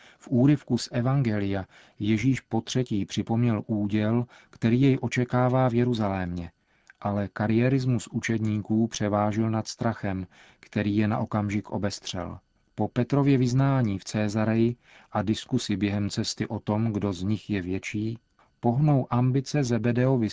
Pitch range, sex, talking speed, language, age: 105-120 Hz, male, 130 wpm, Czech, 40-59